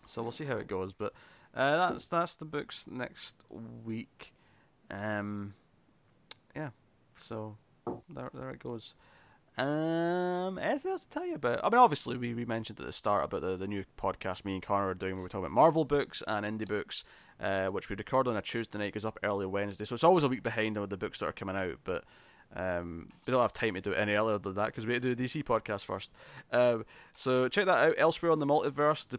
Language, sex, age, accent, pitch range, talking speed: English, male, 20-39, British, 100-140 Hz, 235 wpm